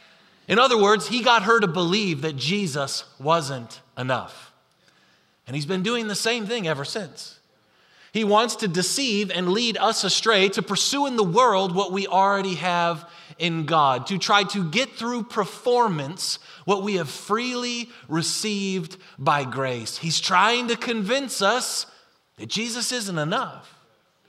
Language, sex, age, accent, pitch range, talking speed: English, male, 30-49, American, 180-230 Hz, 155 wpm